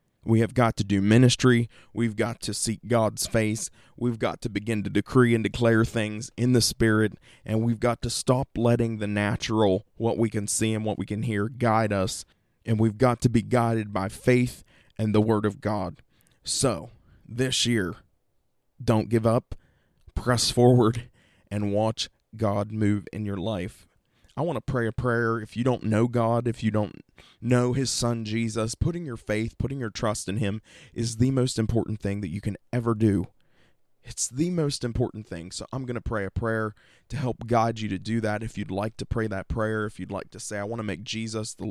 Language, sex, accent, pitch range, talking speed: English, male, American, 105-120 Hz, 205 wpm